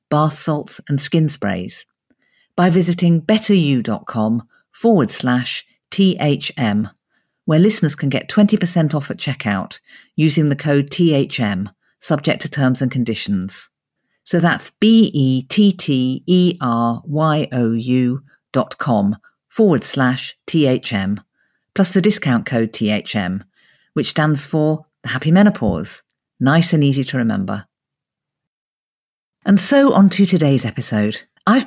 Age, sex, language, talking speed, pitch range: 50-69, female, English, 110 wpm, 120-180 Hz